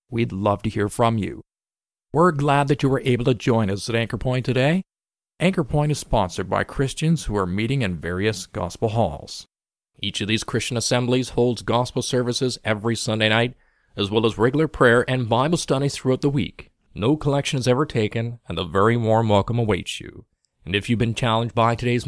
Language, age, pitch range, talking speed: English, 40-59, 110-140 Hz, 200 wpm